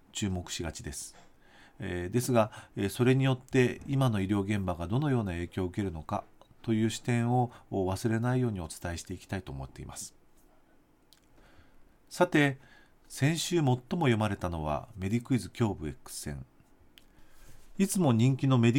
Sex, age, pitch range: male, 40-59, 100-135 Hz